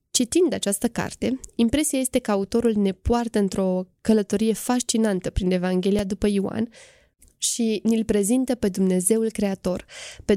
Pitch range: 195-230 Hz